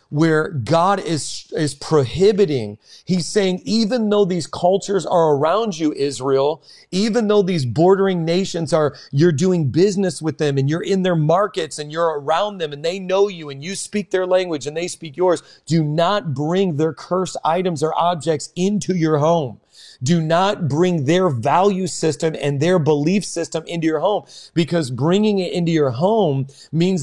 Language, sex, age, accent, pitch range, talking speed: English, male, 40-59, American, 155-195 Hz, 175 wpm